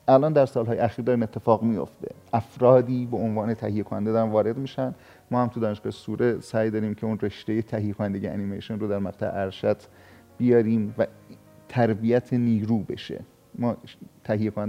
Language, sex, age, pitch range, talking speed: Persian, male, 40-59, 105-125 Hz, 155 wpm